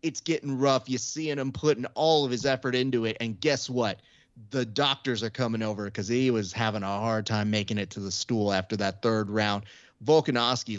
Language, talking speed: English, 210 wpm